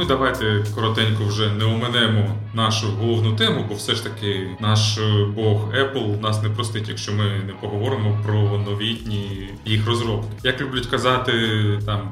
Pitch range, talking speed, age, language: 105-125 Hz, 155 wpm, 20-39, Ukrainian